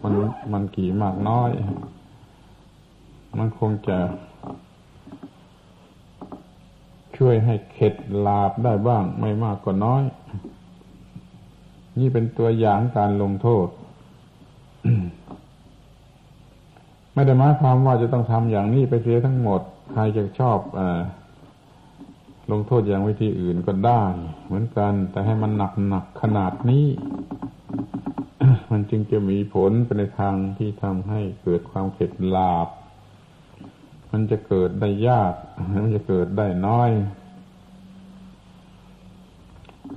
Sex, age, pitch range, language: male, 60-79, 95-120 Hz, Thai